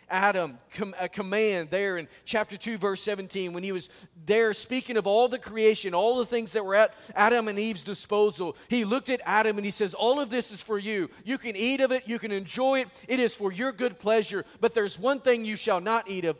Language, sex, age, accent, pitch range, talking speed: English, male, 40-59, American, 180-230 Hz, 240 wpm